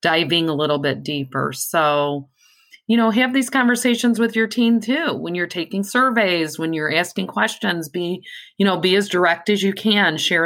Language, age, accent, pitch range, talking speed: English, 40-59, American, 150-205 Hz, 190 wpm